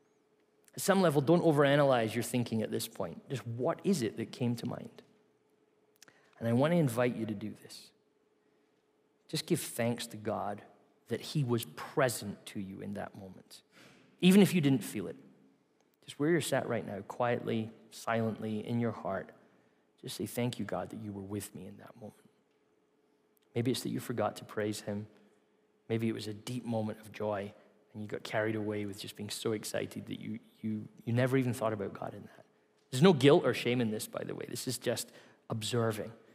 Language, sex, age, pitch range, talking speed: English, male, 20-39, 110-135 Hz, 200 wpm